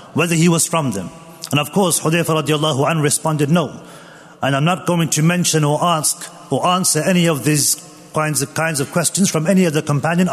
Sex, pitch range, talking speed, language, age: male, 165-210 Hz, 205 wpm, English, 40-59